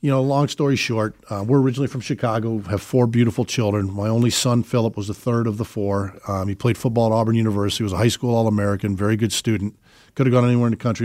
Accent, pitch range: American, 110-120 Hz